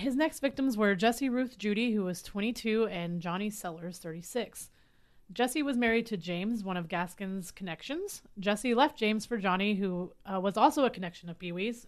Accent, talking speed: American, 180 wpm